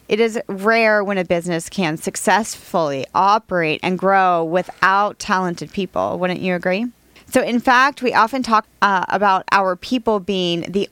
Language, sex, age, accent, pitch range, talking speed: English, female, 30-49, American, 185-240 Hz, 160 wpm